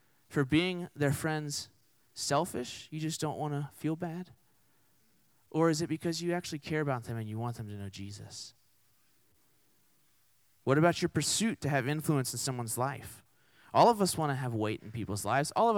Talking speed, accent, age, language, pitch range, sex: 190 wpm, American, 30-49, English, 115-155 Hz, male